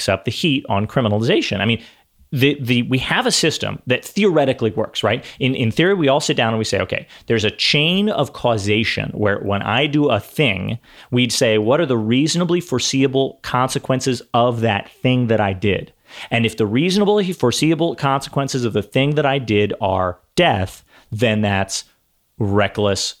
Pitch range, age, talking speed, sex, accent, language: 110-155 Hz, 30-49, 180 wpm, male, American, English